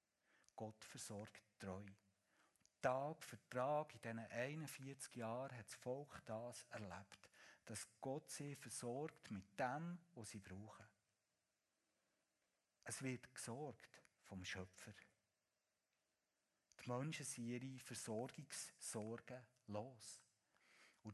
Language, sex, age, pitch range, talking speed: German, male, 60-79, 105-125 Hz, 100 wpm